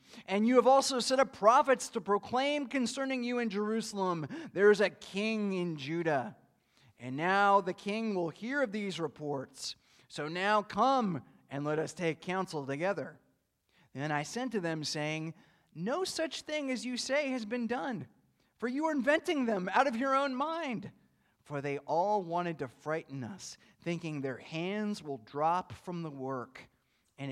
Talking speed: 170 wpm